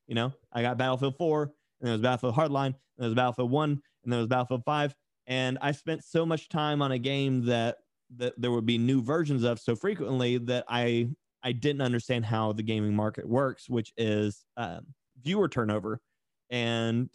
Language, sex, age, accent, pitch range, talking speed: English, male, 30-49, American, 125-150 Hz, 195 wpm